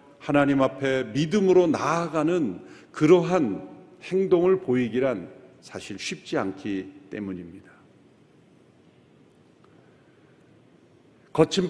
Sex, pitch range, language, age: male, 120-180 Hz, Korean, 50-69